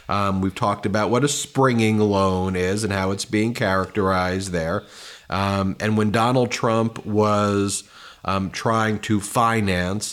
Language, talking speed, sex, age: English, 150 wpm, male, 30-49